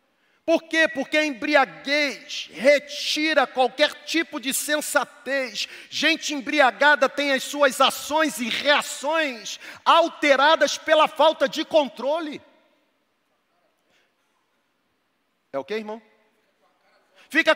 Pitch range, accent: 245-295 Hz, Brazilian